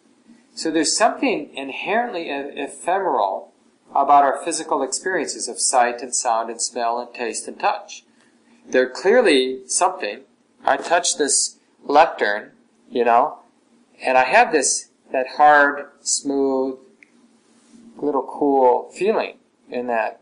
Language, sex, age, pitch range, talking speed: English, male, 40-59, 125-195 Hz, 120 wpm